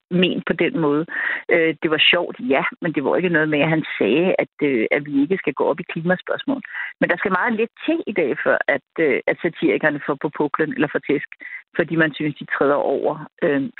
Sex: female